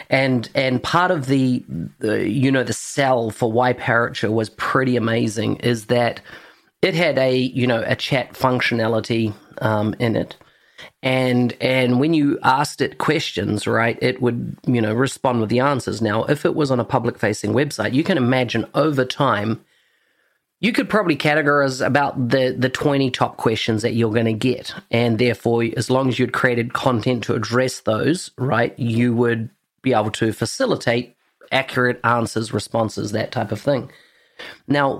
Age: 30-49